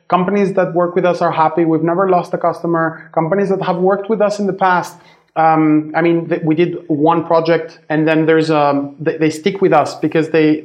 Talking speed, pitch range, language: 215 wpm, 155-175 Hz, English